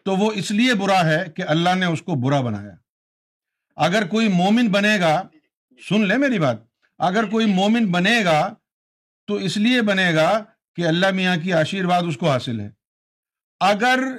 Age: 50-69